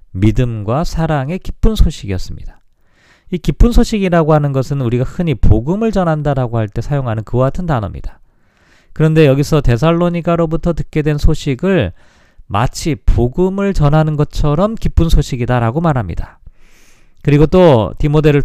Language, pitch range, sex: Korean, 110-155 Hz, male